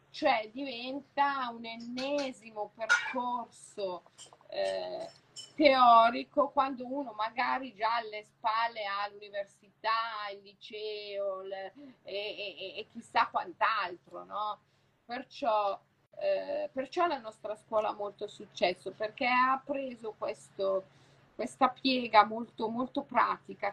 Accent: native